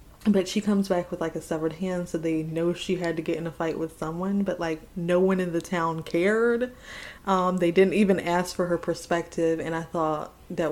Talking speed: 230 wpm